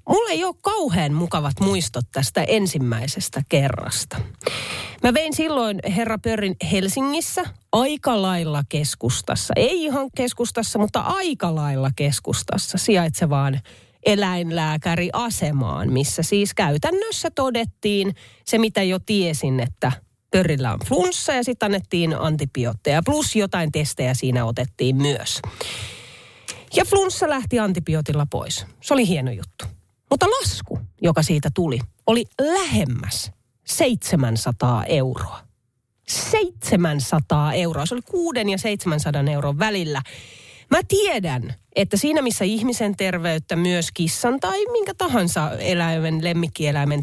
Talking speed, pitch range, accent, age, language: 115 wpm, 140-220 Hz, native, 30-49, Finnish